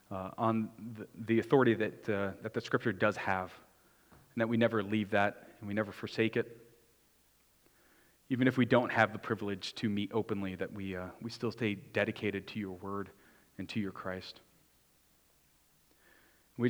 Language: English